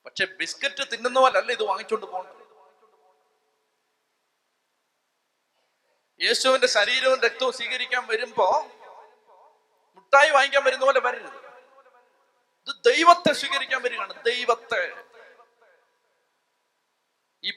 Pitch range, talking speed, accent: 175-230 Hz, 55 wpm, native